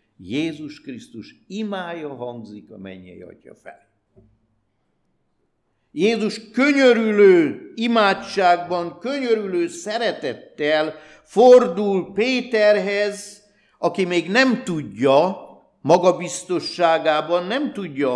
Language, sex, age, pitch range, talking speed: Hungarian, male, 60-79, 135-215 Hz, 70 wpm